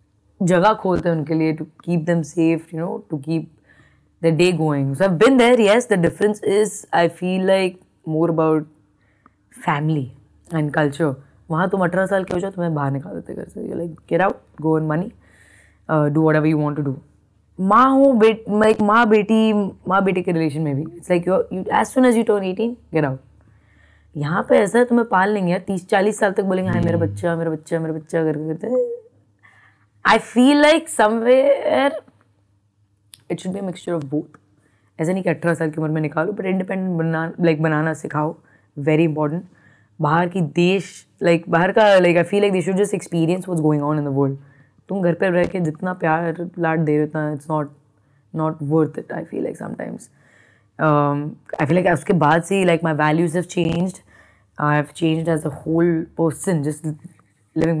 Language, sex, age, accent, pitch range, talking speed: Hindi, female, 20-39, native, 150-185 Hz, 195 wpm